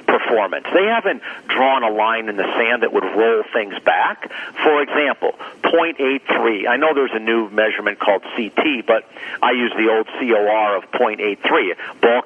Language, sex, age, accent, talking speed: English, male, 50-69, American, 165 wpm